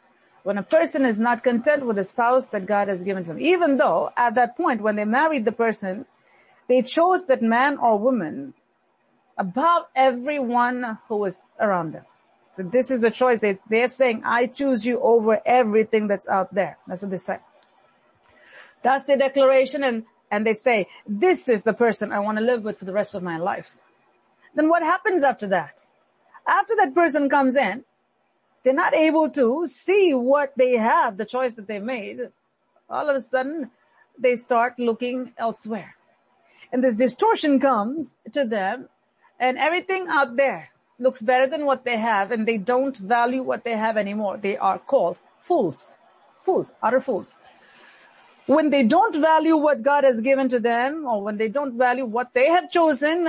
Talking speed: 180 wpm